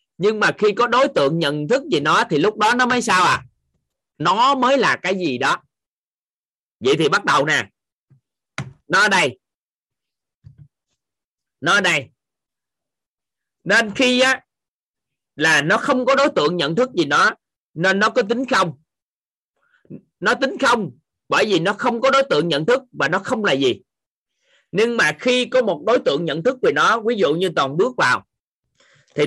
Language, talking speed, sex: Vietnamese, 180 wpm, male